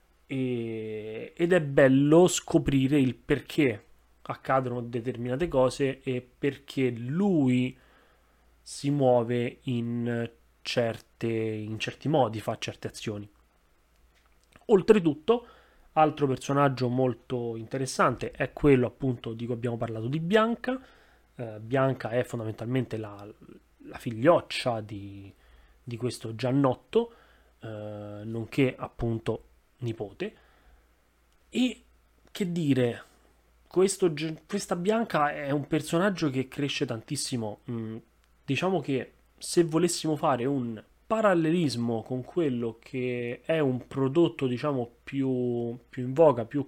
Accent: native